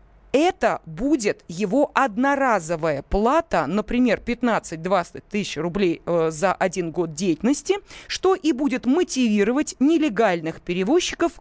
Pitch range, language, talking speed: 180-255 Hz, Russian, 100 wpm